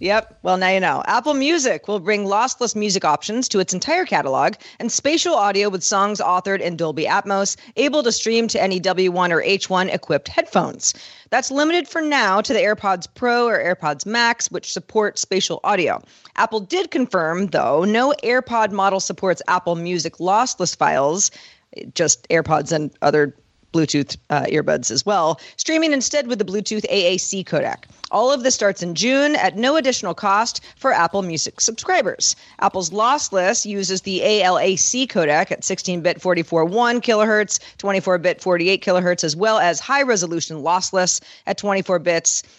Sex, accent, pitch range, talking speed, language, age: female, American, 180-235 Hz, 160 wpm, English, 40-59